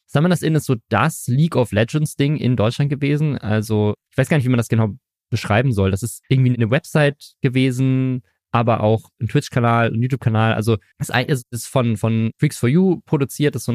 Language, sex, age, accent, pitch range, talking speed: German, male, 20-39, German, 110-135 Hz, 200 wpm